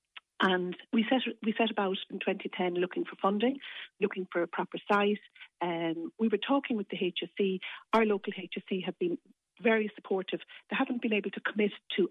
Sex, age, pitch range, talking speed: female, 40-59, 180-225 Hz, 185 wpm